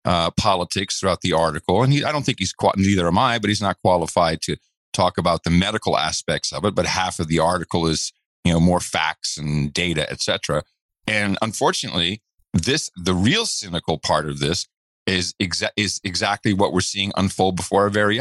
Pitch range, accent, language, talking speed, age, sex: 90-120 Hz, American, English, 190 wpm, 40-59, male